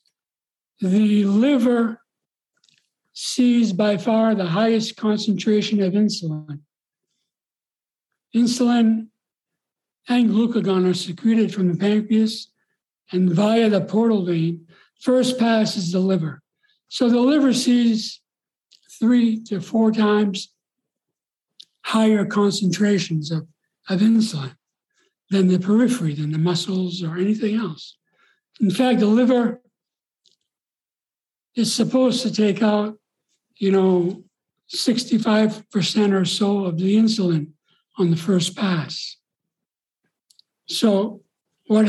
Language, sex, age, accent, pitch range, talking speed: English, male, 60-79, American, 185-225 Hz, 105 wpm